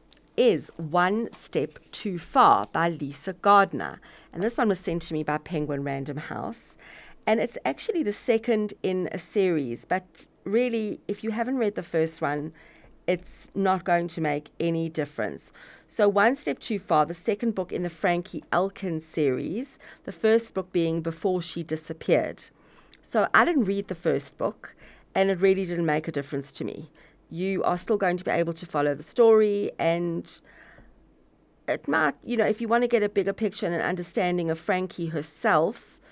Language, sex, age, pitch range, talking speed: English, female, 40-59, 160-210 Hz, 180 wpm